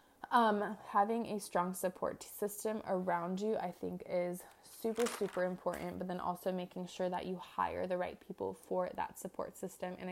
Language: English